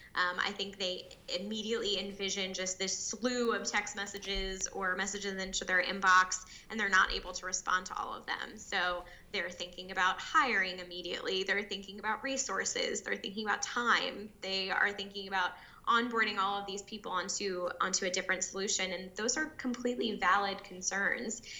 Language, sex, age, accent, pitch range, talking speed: English, female, 10-29, American, 180-200 Hz, 170 wpm